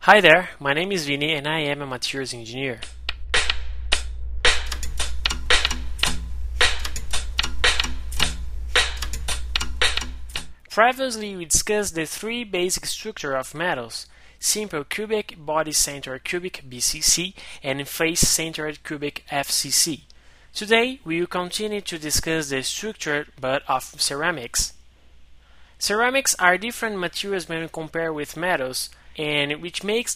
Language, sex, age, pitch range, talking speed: English, male, 20-39, 125-180 Hz, 105 wpm